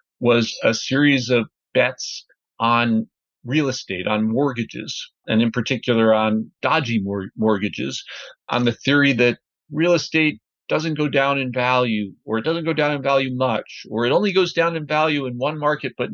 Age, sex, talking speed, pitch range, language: 50-69, male, 175 wpm, 115-155 Hz, English